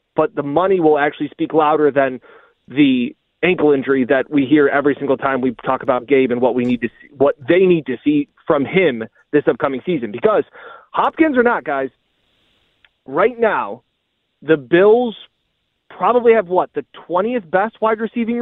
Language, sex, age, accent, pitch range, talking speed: English, male, 30-49, American, 150-210 Hz, 175 wpm